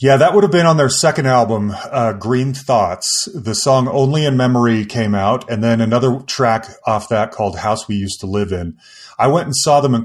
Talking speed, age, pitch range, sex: 225 wpm, 30-49, 105-135 Hz, male